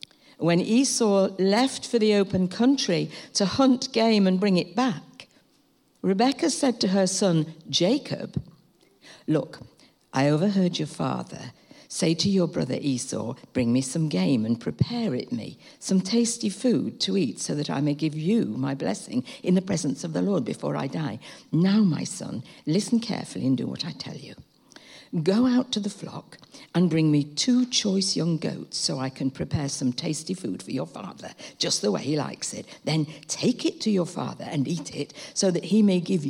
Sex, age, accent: female, 60-79, British